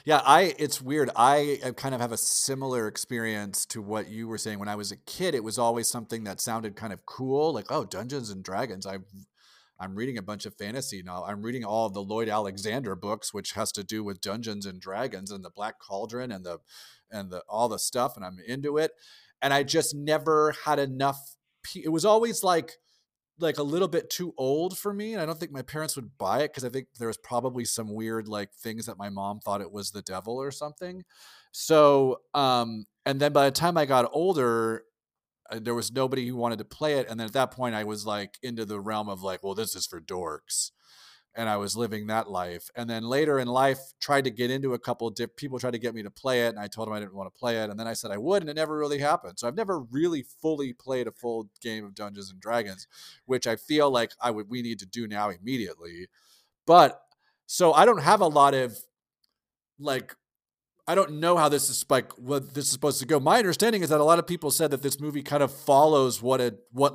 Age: 40-59